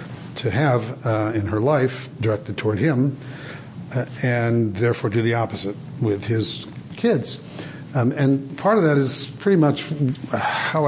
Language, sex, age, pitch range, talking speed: English, male, 50-69, 110-140 Hz, 150 wpm